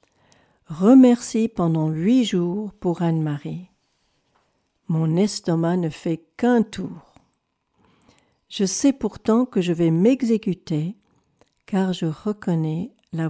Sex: female